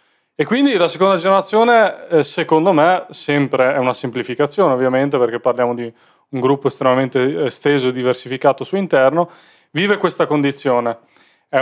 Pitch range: 130-155 Hz